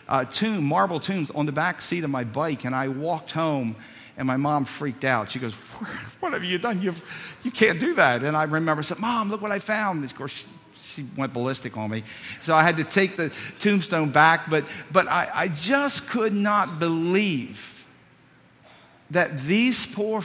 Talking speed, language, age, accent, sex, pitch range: 200 wpm, English, 50-69, American, male, 145-205 Hz